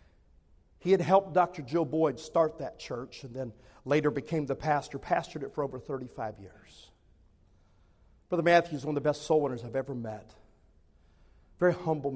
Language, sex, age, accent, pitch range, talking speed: English, male, 50-69, American, 115-170 Hz, 170 wpm